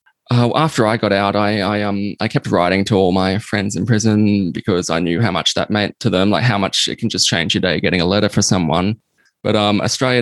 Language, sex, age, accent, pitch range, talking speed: English, male, 20-39, Australian, 95-115 Hz, 260 wpm